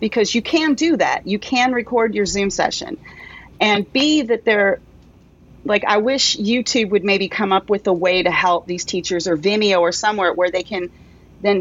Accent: American